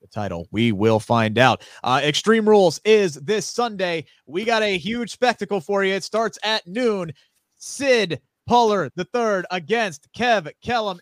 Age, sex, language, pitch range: 30-49, male, English, 170-250 Hz